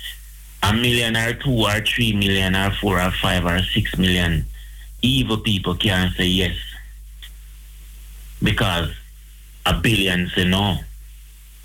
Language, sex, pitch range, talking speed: Dutch, male, 80-105 Hz, 125 wpm